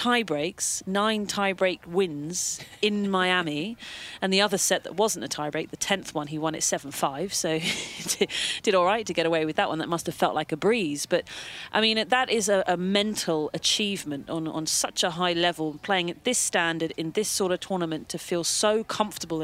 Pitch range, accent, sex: 165-215 Hz, British, female